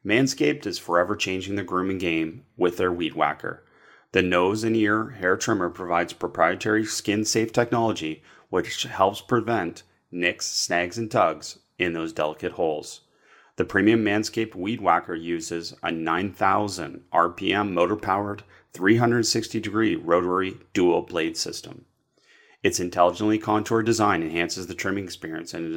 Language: English